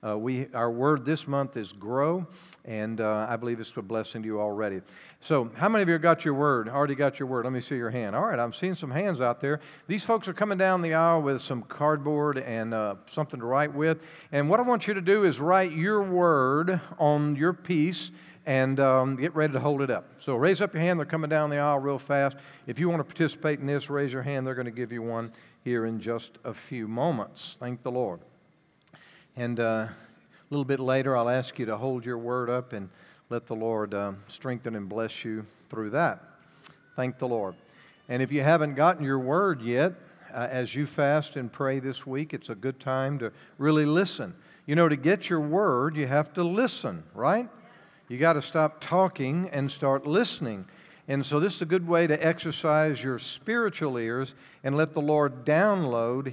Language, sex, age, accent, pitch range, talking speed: English, male, 50-69, American, 125-160 Hz, 220 wpm